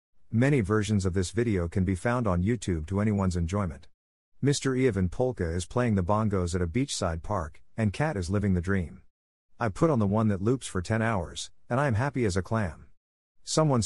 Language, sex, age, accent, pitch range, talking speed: English, male, 50-69, American, 90-115 Hz, 210 wpm